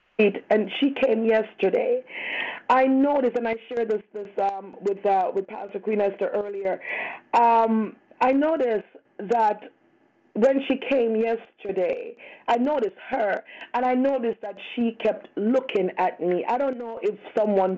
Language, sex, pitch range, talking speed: English, female, 200-240 Hz, 150 wpm